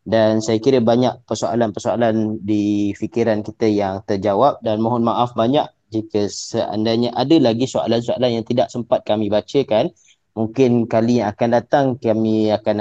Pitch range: 105-120 Hz